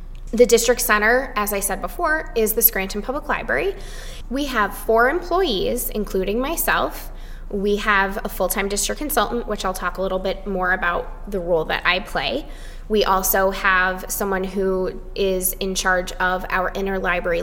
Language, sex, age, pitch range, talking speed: English, female, 20-39, 195-245 Hz, 165 wpm